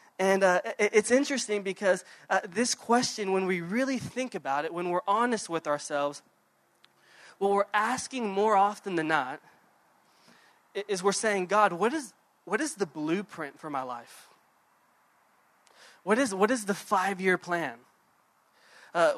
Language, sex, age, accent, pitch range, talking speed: English, male, 20-39, American, 175-215 Hz, 145 wpm